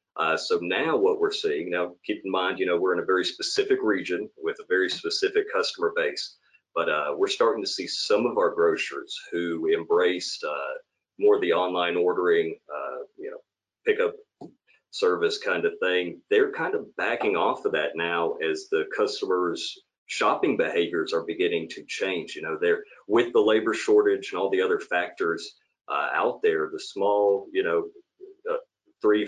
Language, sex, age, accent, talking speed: English, male, 40-59, American, 175 wpm